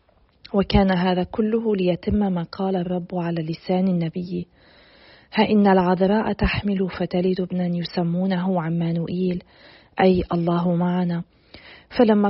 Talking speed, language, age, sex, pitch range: 105 wpm, Arabic, 40-59, female, 180-210 Hz